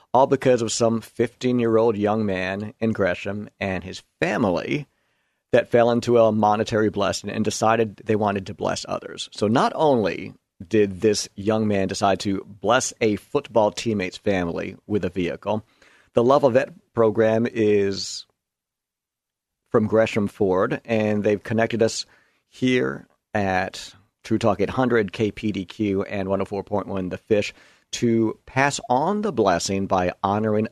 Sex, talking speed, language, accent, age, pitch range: male, 140 wpm, English, American, 50-69, 100-115 Hz